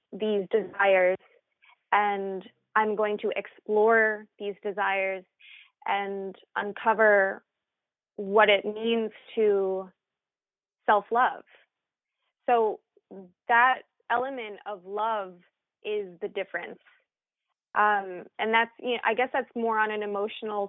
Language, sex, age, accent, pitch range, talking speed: English, female, 20-39, American, 195-220 Hz, 105 wpm